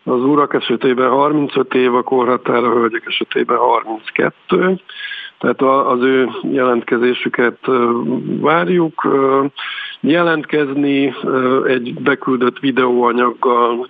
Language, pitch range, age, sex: Hungarian, 120-135 Hz, 50-69, male